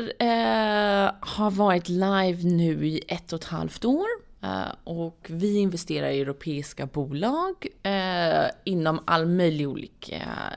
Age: 20-39